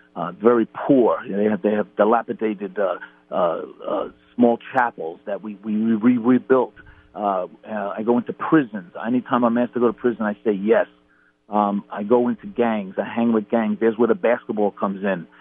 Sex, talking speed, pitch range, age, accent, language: male, 200 wpm, 105-125 Hz, 50-69, American, English